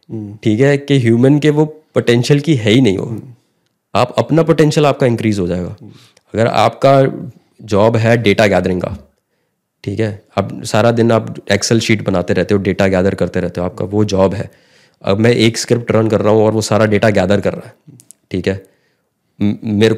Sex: male